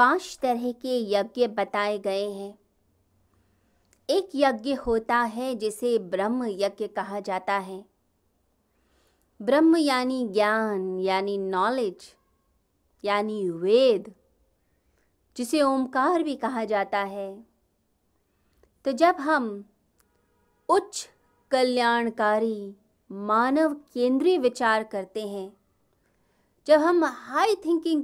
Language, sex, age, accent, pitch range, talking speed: Hindi, female, 30-49, native, 205-270 Hz, 95 wpm